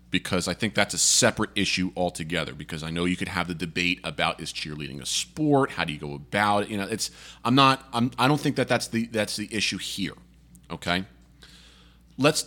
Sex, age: male, 40-59